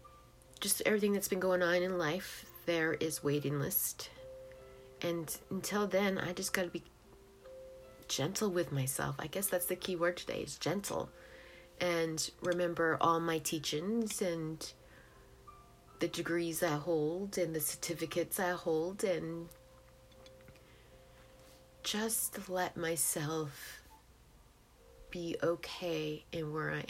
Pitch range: 145-180 Hz